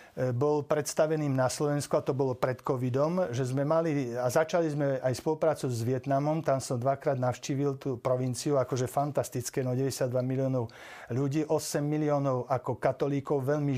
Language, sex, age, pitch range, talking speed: Slovak, male, 50-69, 135-165 Hz, 155 wpm